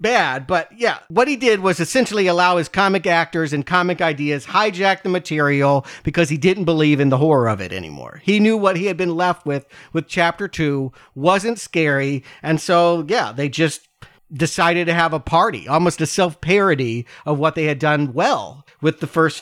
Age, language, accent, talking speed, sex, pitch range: 40-59, English, American, 200 wpm, male, 150-195 Hz